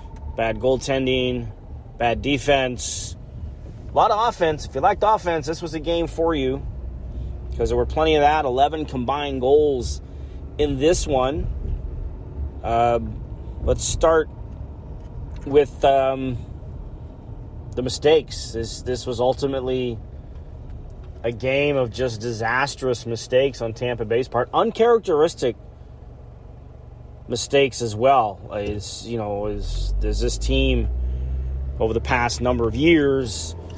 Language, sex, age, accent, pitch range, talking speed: English, male, 30-49, American, 95-140 Hz, 120 wpm